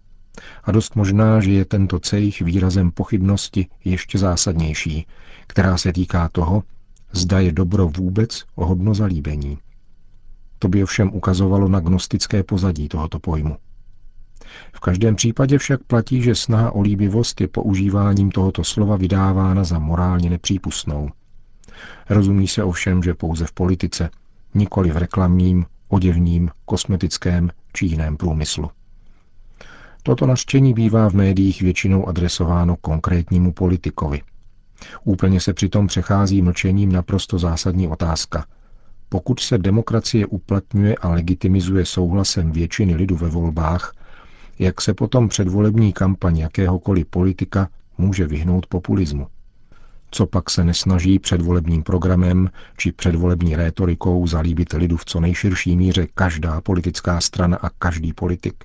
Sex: male